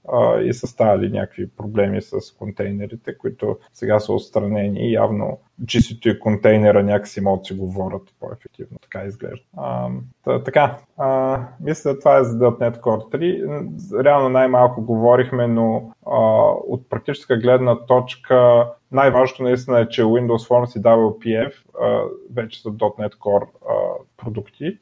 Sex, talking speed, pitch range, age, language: male, 135 wpm, 100-120 Hz, 20-39, Bulgarian